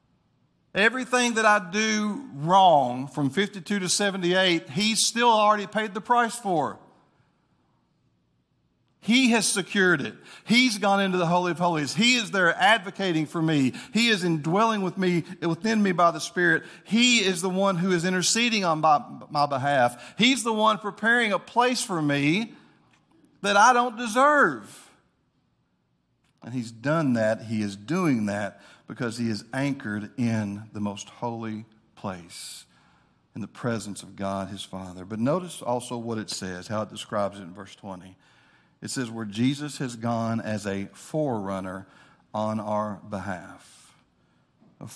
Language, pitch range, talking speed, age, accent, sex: English, 115-185 Hz, 150 wpm, 50-69, American, male